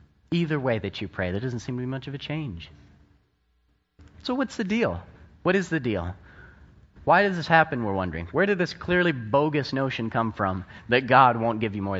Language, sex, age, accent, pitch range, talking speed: English, male, 30-49, American, 95-145 Hz, 210 wpm